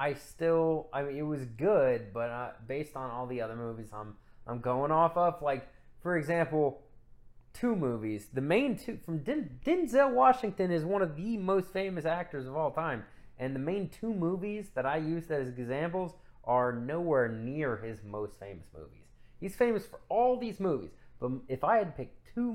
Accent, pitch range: American, 110-165 Hz